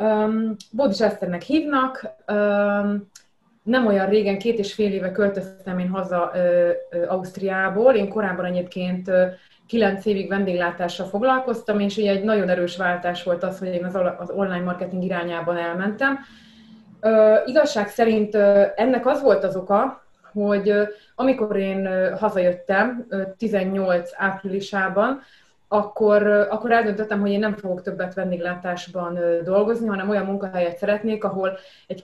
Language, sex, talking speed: Hungarian, female, 140 wpm